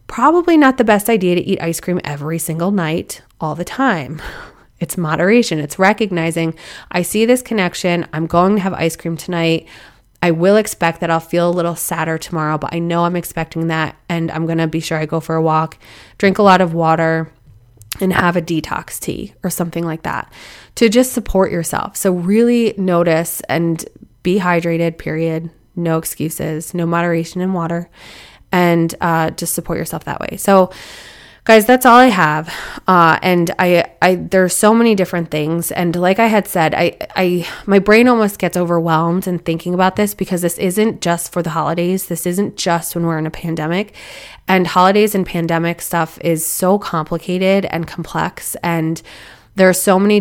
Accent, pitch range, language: American, 165-190 Hz, English